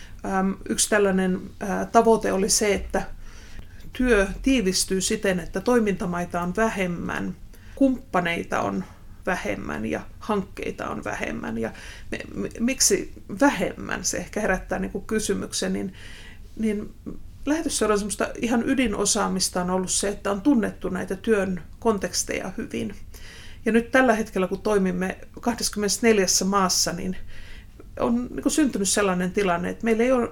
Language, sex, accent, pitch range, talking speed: Finnish, female, native, 180-220 Hz, 120 wpm